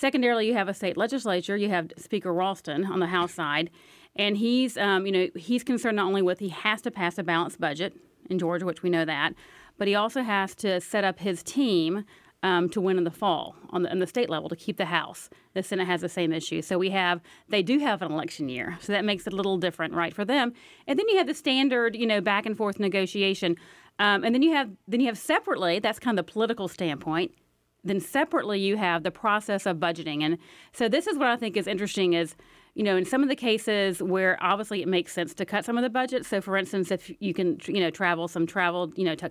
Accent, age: American, 40-59